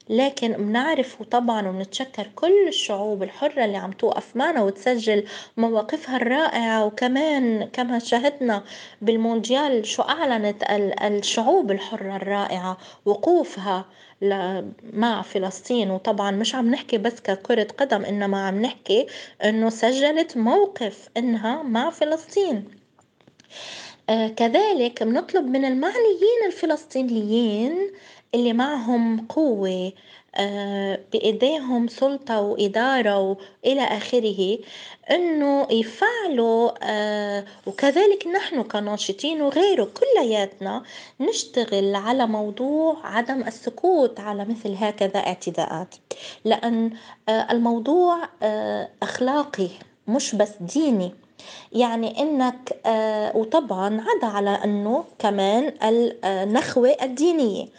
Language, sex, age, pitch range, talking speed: Arabic, female, 20-39, 210-275 Hz, 90 wpm